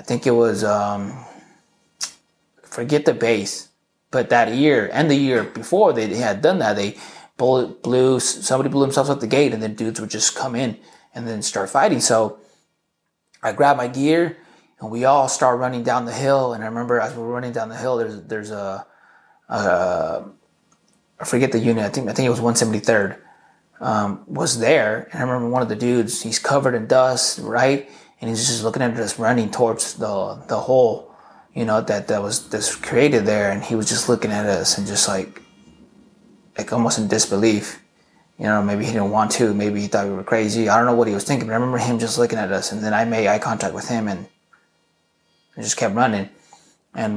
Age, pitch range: 20-39, 110-130 Hz